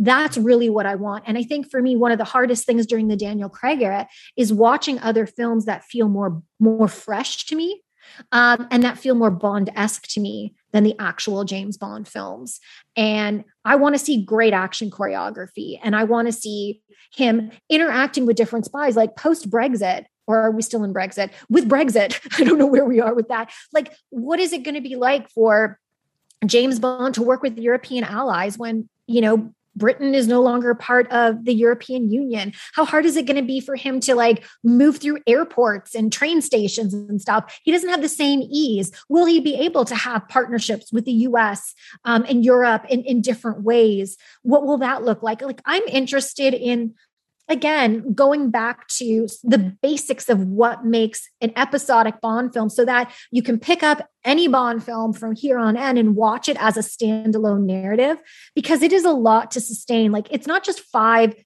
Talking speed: 200 wpm